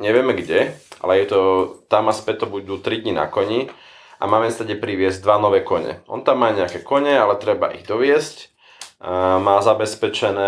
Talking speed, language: 195 wpm, Slovak